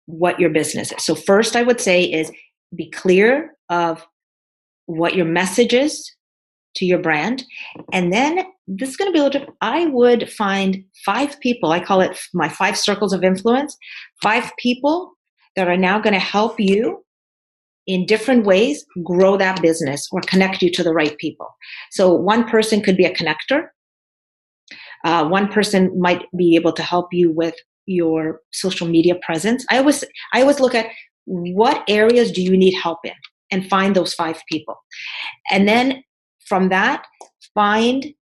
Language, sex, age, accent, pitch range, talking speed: English, female, 40-59, American, 170-235 Hz, 170 wpm